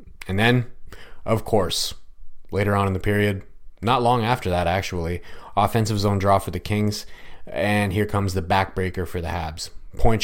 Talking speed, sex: 170 wpm, male